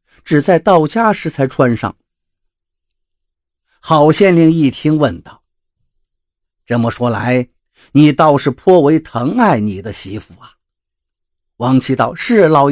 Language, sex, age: Chinese, male, 50-69